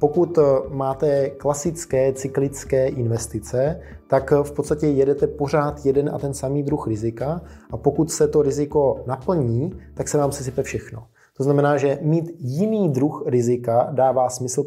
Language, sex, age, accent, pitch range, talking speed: Czech, male, 20-39, native, 120-145 Hz, 145 wpm